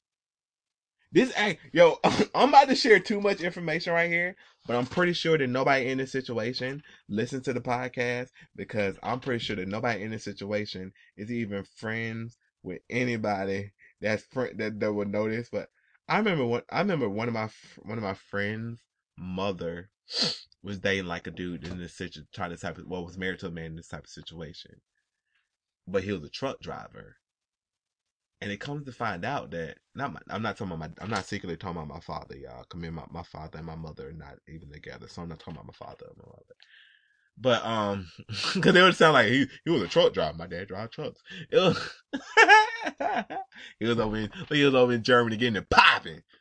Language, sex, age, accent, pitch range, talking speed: English, male, 20-39, American, 95-165 Hz, 210 wpm